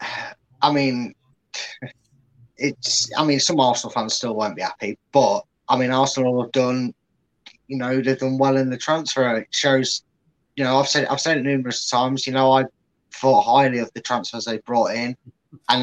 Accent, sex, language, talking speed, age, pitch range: British, male, English, 185 wpm, 20-39, 120-140 Hz